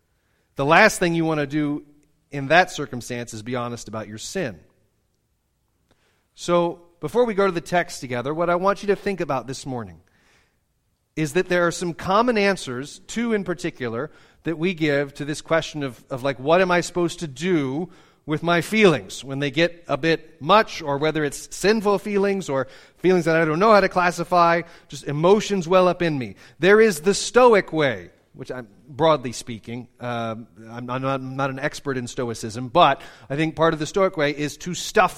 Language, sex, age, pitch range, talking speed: English, male, 30-49, 130-175 Hz, 200 wpm